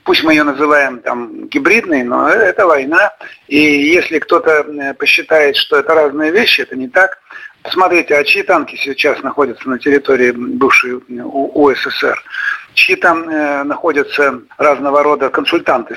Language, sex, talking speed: Russian, male, 135 wpm